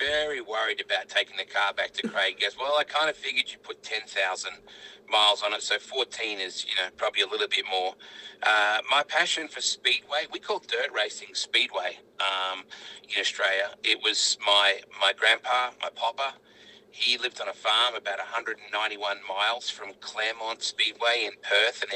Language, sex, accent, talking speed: English, male, Australian, 180 wpm